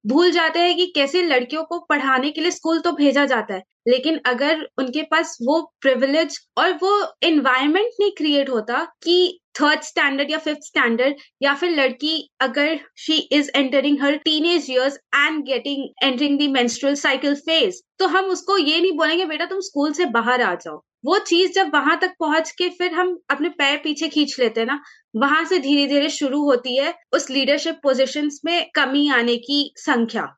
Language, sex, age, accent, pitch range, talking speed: Hindi, female, 20-39, native, 265-325 Hz, 180 wpm